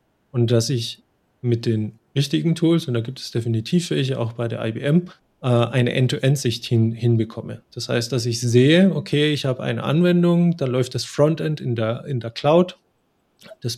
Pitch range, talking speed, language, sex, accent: 115-140 Hz, 185 wpm, German, male, German